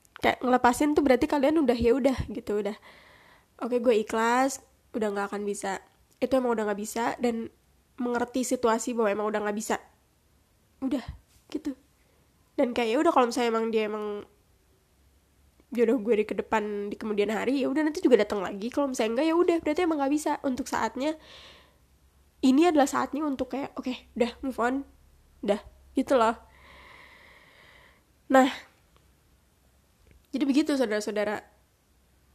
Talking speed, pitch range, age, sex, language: 150 wpm, 225-295 Hz, 20-39, female, Indonesian